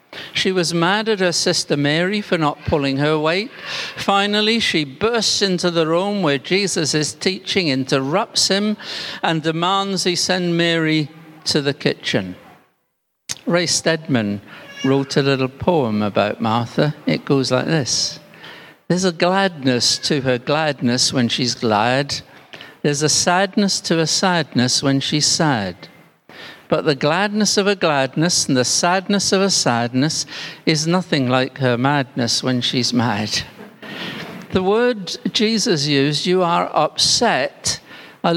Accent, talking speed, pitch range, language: British, 140 wpm, 130-185 Hz, English